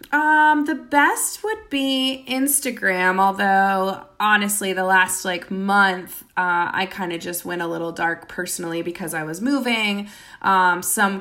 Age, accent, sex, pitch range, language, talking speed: 20-39, American, female, 170-205 Hz, English, 150 wpm